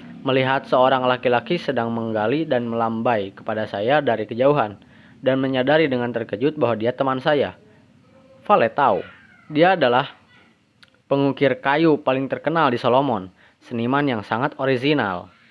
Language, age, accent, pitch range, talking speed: Indonesian, 20-39, native, 115-145 Hz, 125 wpm